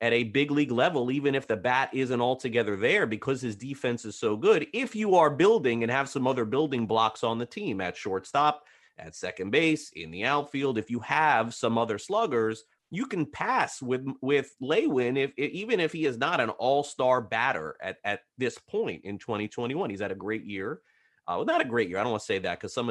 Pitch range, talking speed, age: 110-150 Hz, 220 wpm, 30-49